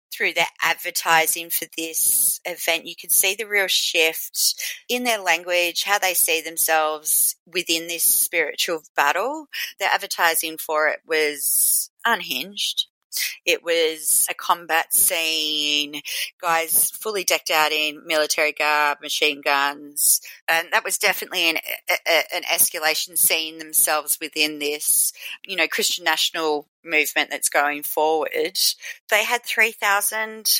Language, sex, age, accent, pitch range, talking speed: English, female, 30-49, Australian, 150-200 Hz, 130 wpm